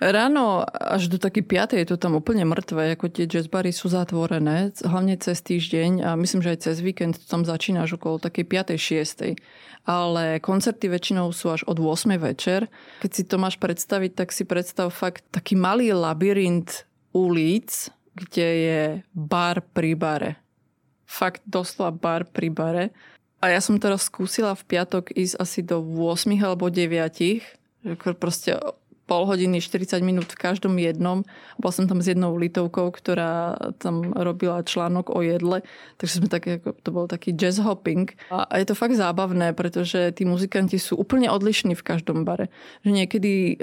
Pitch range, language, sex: 170-190 Hz, Slovak, female